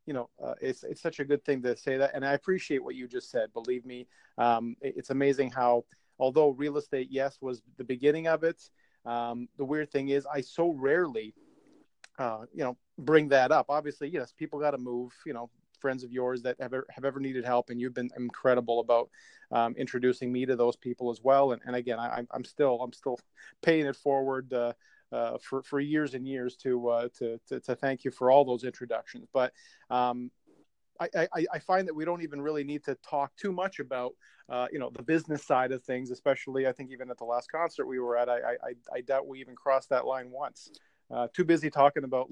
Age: 30-49